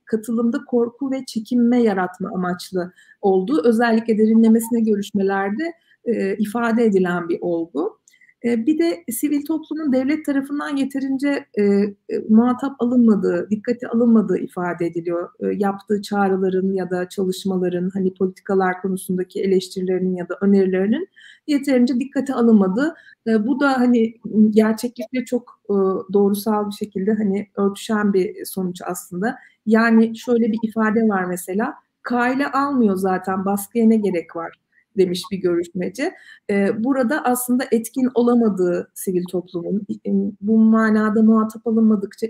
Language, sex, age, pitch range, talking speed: Turkish, female, 50-69, 190-250 Hz, 125 wpm